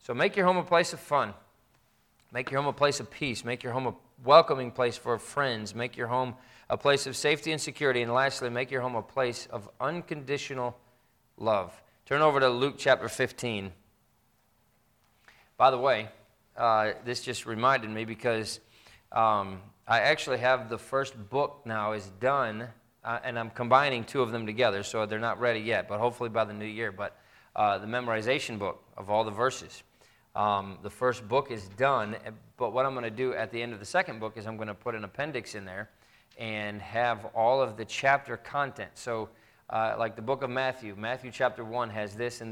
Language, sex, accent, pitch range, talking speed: English, male, American, 110-130 Hz, 200 wpm